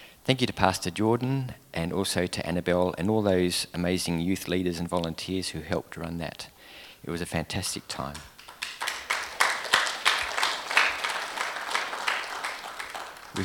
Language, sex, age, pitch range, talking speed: English, male, 40-59, 85-100 Hz, 120 wpm